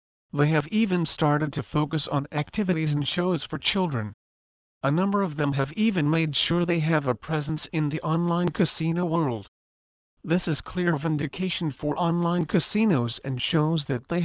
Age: 40-59